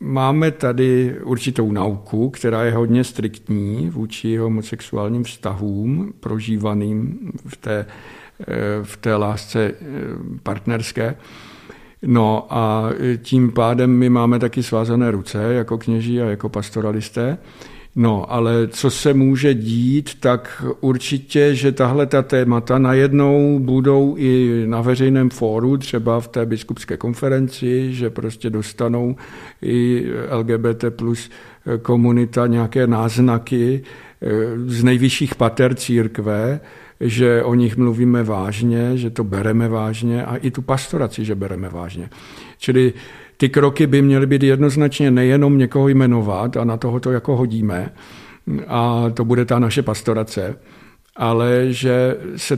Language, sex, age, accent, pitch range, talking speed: Czech, male, 50-69, native, 115-130 Hz, 125 wpm